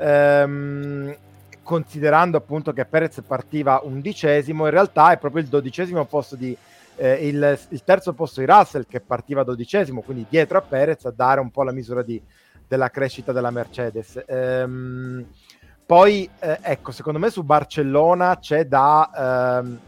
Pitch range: 135-160 Hz